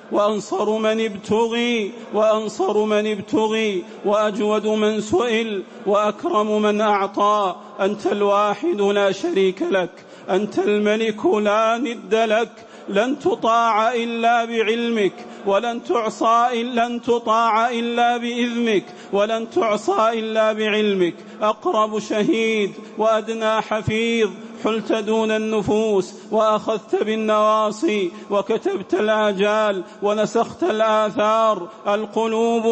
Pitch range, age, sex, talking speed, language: 210-240 Hz, 40-59, male, 90 wpm, English